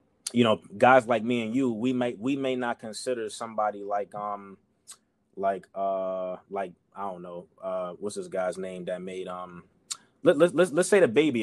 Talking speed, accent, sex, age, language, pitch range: 195 wpm, American, male, 20-39, English, 100-125 Hz